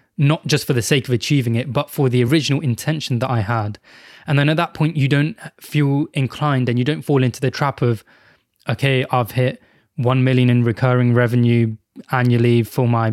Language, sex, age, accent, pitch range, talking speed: English, male, 20-39, British, 120-145 Hz, 200 wpm